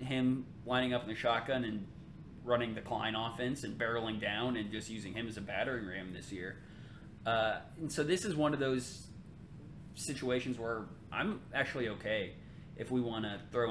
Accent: American